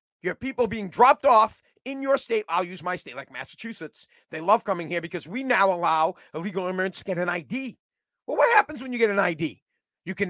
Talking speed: 225 wpm